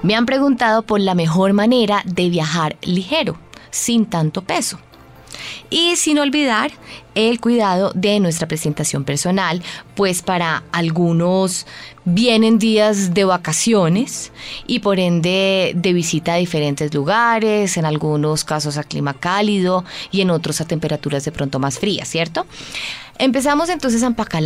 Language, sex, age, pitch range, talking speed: Spanish, female, 20-39, 155-210 Hz, 140 wpm